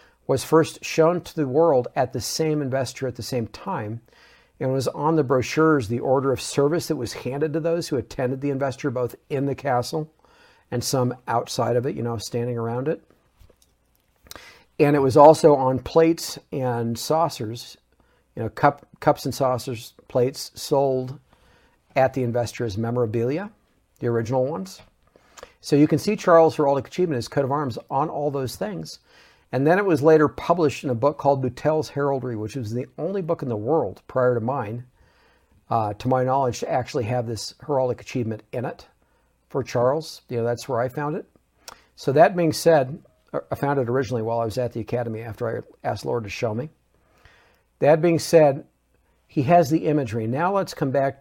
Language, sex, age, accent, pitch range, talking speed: English, male, 50-69, American, 120-150 Hz, 185 wpm